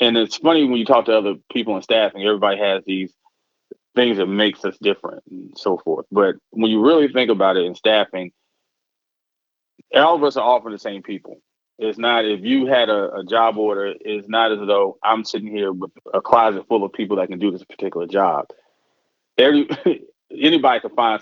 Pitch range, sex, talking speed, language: 105-125 Hz, male, 200 wpm, English